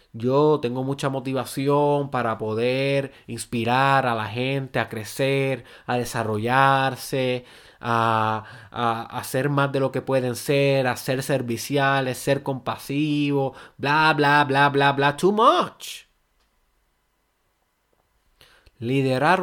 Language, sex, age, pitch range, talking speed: Spanish, male, 30-49, 135-170 Hz, 115 wpm